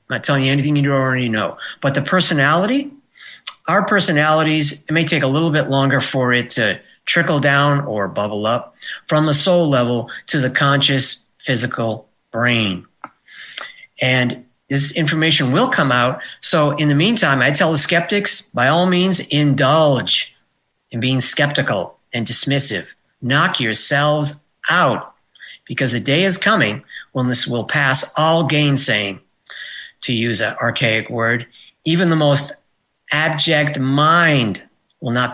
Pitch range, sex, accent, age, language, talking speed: 125-155 Hz, male, American, 50-69, English, 150 wpm